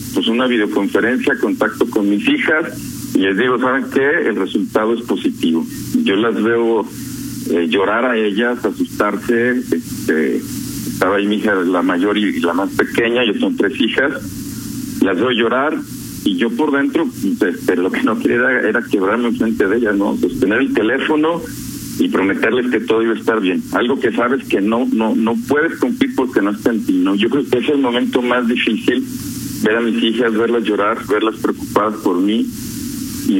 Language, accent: Spanish, Mexican